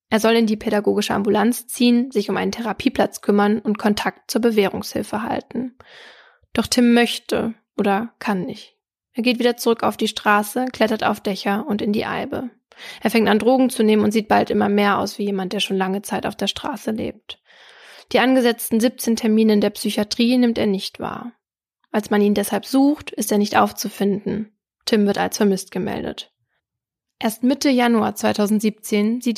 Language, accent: German, German